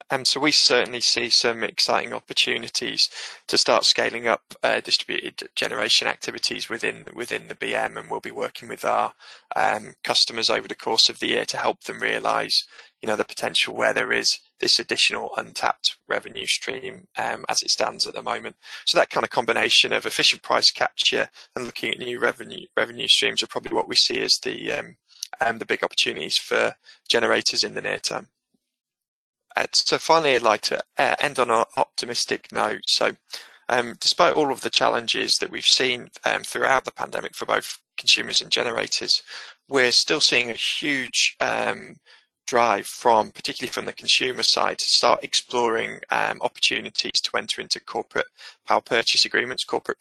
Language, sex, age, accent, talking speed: English, male, 20-39, British, 175 wpm